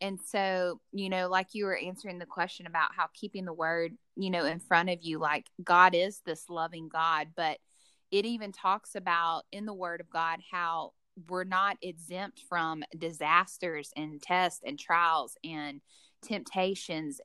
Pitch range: 160-185 Hz